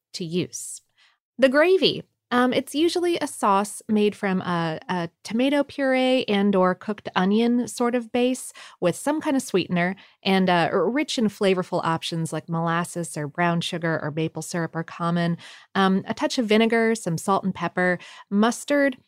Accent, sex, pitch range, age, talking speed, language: American, female, 170-230 Hz, 30-49, 165 wpm, English